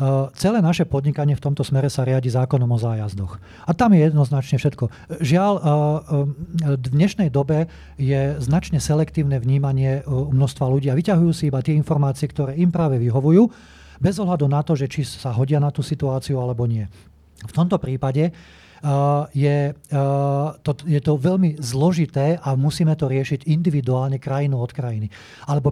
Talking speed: 170 wpm